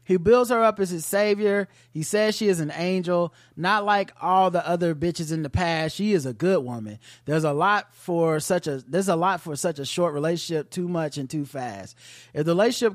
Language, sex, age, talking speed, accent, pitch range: English, male, 30-49, 205 wpm, American, 145-185 Hz